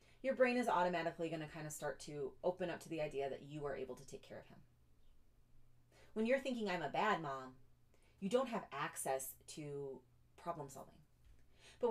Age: 30-49